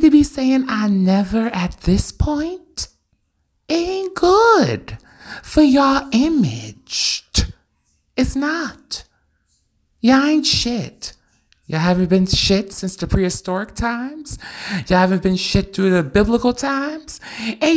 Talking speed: 120 wpm